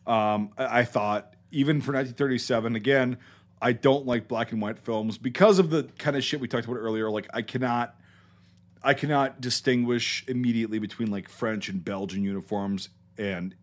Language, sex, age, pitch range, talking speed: English, male, 40-59, 95-120 Hz, 165 wpm